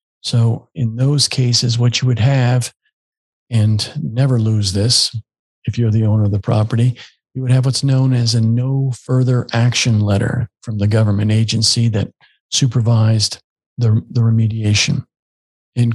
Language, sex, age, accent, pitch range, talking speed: English, male, 50-69, American, 110-130 Hz, 150 wpm